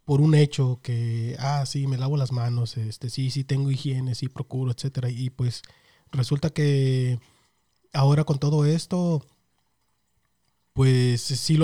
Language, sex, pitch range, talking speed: Spanish, male, 125-145 Hz, 150 wpm